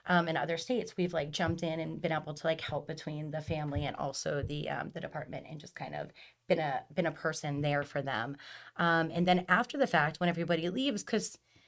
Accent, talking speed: American, 230 wpm